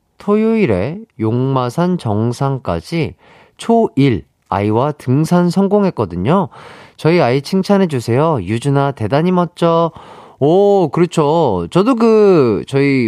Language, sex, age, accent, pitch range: Korean, male, 30-49, native, 105-170 Hz